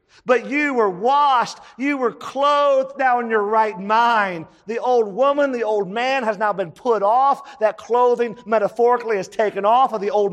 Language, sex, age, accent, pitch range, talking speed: English, male, 40-59, American, 210-260 Hz, 185 wpm